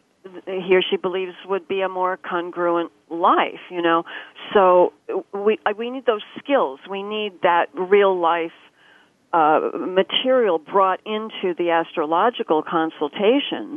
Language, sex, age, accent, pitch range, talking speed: English, female, 50-69, American, 165-195 Hz, 125 wpm